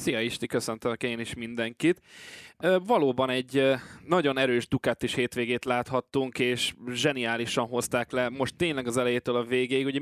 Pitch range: 125-145 Hz